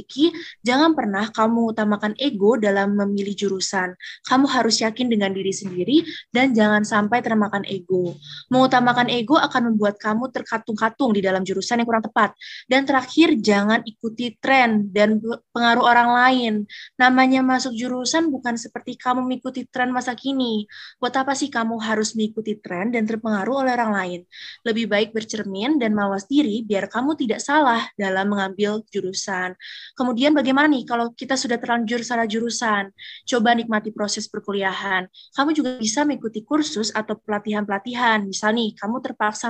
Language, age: Indonesian, 20-39